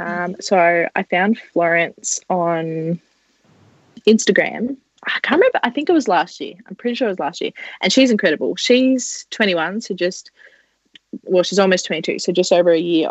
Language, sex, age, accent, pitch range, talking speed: English, female, 20-39, Australian, 170-205 Hz, 180 wpm